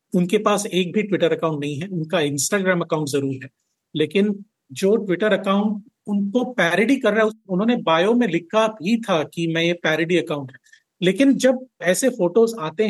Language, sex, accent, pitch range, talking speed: Hindi, male, native, 165-205 Hz, 180 wpm